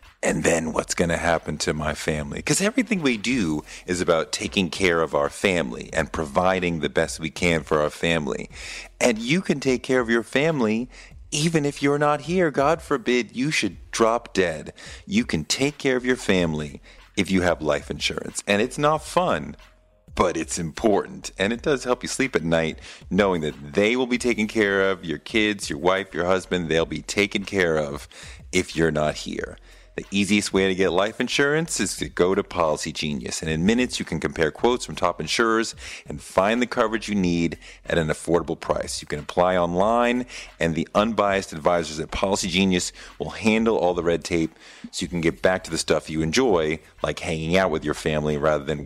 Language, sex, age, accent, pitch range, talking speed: English, male, 40-59, American, 80-125 Hz, 205 wpm